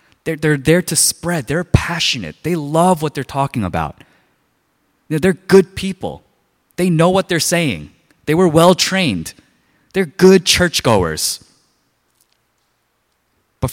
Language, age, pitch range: Korean, 20-39, 110-160 Hz